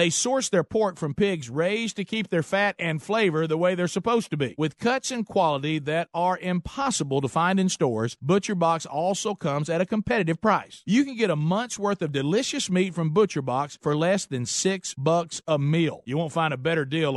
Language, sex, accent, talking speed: English, male, American, 215 wpm